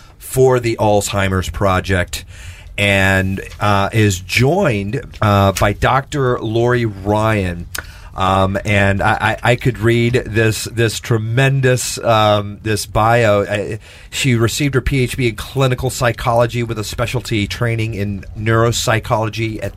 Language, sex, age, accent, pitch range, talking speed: English, male, 40-59, American, 100-120 Hz, 120 wpm